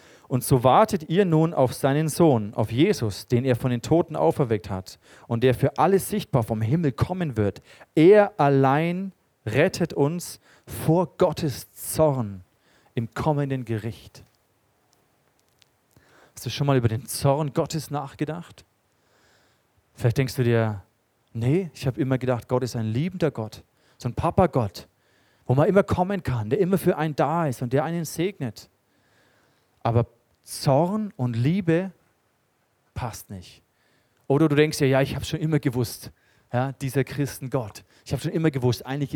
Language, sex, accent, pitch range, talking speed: German, male, German, 115-155 Hz, 160 wpm